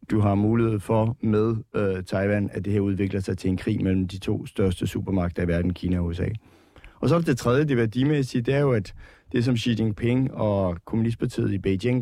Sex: male